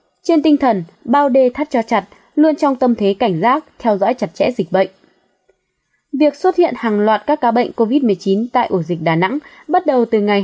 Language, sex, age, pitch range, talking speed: Vietnamese, female, 20-39, 200-290 Hz, 225 wpm